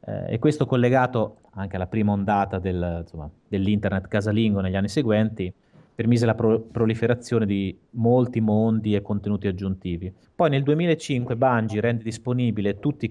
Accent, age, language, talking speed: native, 30-49, Italian, 150 wpm